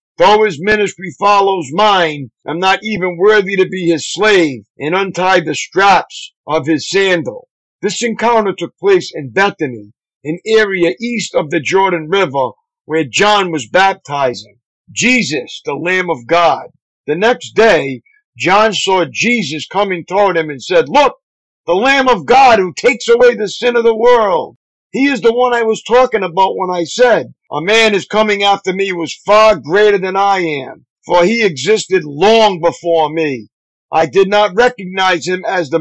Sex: male